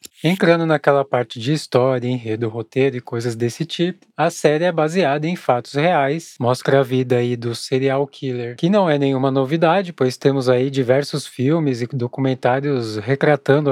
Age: 20-39